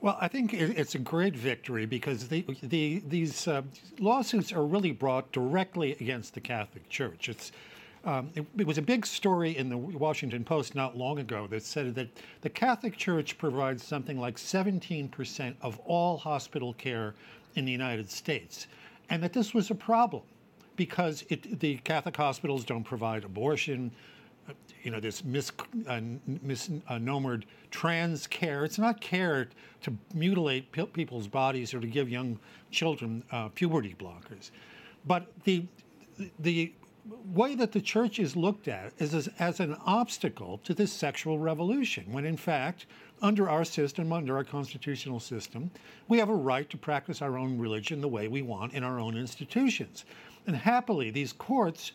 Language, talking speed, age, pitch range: English, 160 wpm, 60-79, 130-185 Hz